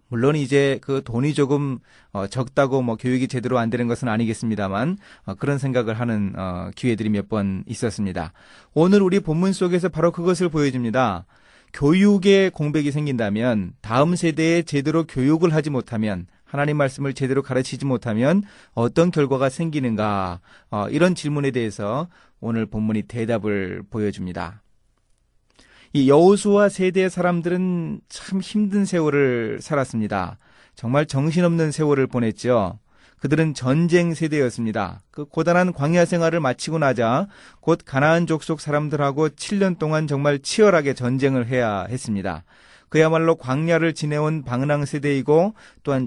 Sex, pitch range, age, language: male, 115-165 Hz, 30-49, Korean